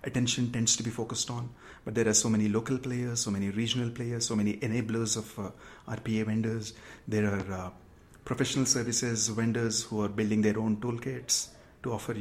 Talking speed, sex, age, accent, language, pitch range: 185 wpm, male, 30-49, Indian, English, 105-120 Hz